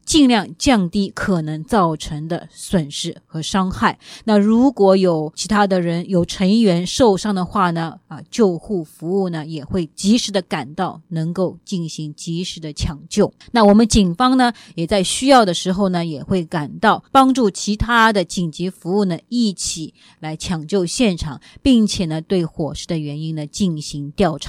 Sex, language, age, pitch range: female, English, 20-39, 165-215 Hz